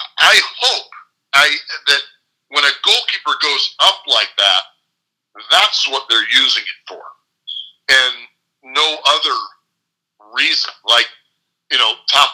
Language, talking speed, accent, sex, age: English, 120 wpm, American, male, 40-59